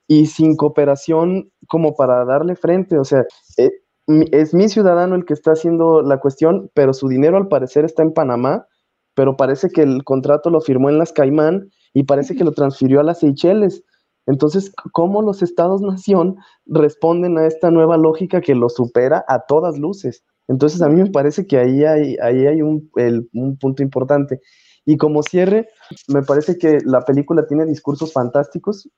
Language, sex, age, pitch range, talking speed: English, male, 20-39, 140-180 Hz, 170 wpm